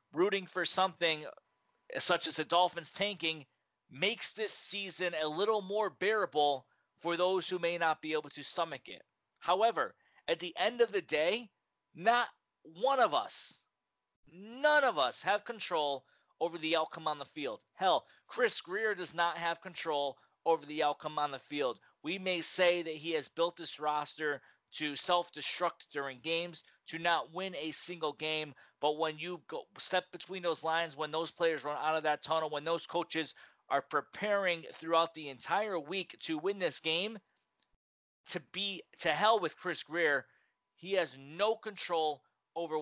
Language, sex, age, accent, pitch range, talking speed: English, male, 30-49, American, 155-190 Hz, 170 wpm